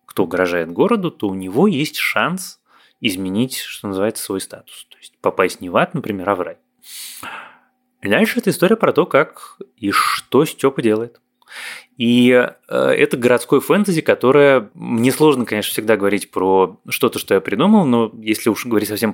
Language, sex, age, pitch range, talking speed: Russian, male, 20-39, 90-125 Hz, 165 wpm